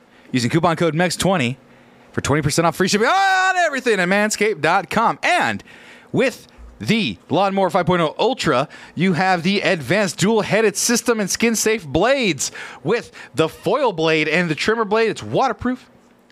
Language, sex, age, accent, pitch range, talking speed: English, male, 30-49, American, 145-200 Hz, 140 wpm